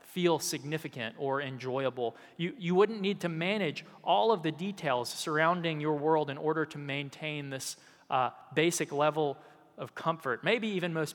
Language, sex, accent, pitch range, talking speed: English, male, American, 125-160 Hz, 160 wpm